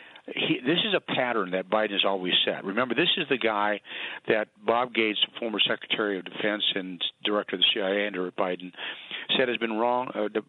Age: 50-69